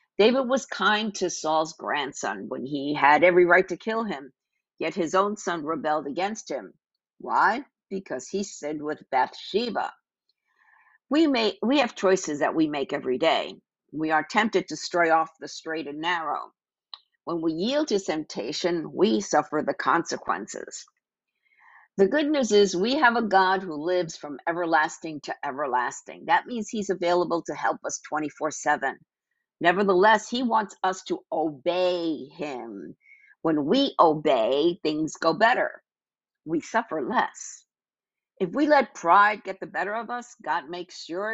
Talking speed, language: 155 wpm, English